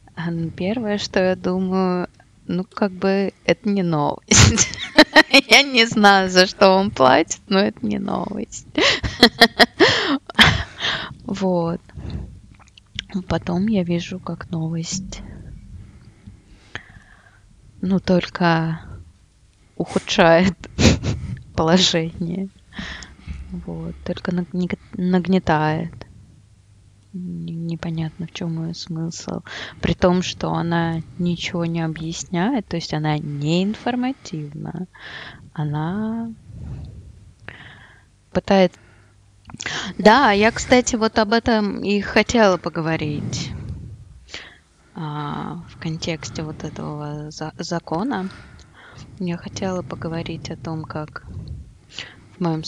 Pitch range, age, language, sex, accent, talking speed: 125-190 Hz, 20-39, Russian, female, native, 85 wpm